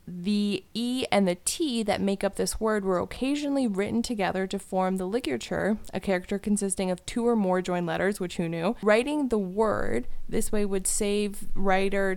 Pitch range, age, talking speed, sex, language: 190-230 Hz, 20-39, 185 wpm, female, English